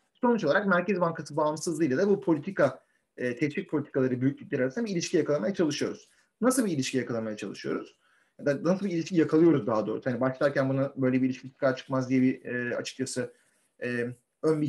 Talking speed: 170 wpm